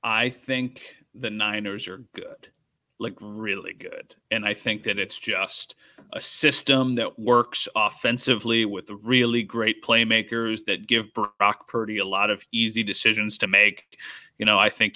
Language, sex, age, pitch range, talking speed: English, male, 30-49, 110-125 Hz, 155 wpm